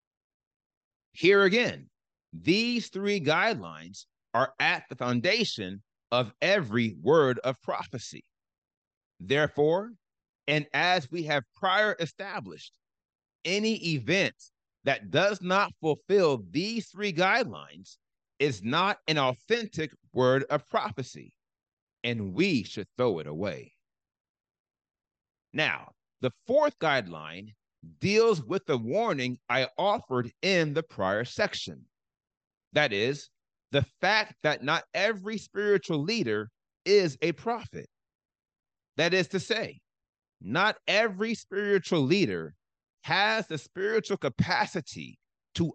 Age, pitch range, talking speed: 30-49, 120-200 Hz, 110 wpm